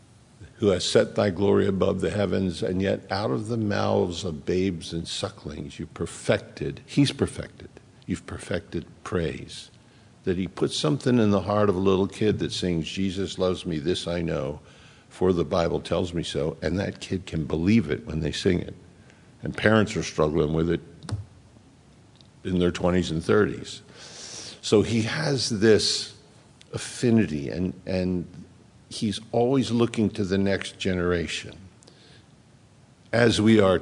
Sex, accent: male, American